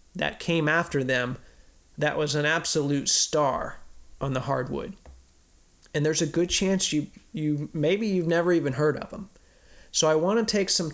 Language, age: English, 30-49